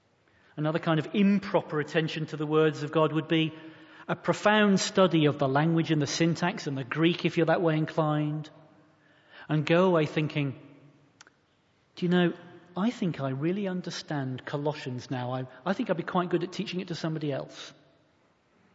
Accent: British